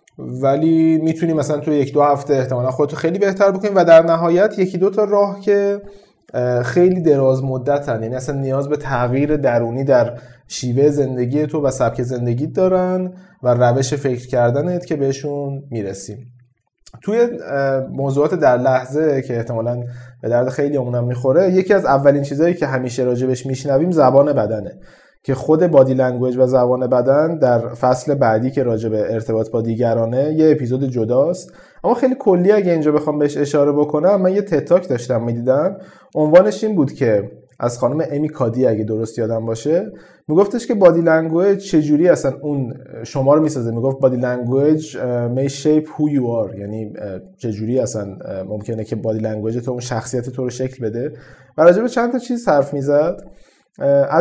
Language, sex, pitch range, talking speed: Persian, male, 125-165 Hz, 165 wpm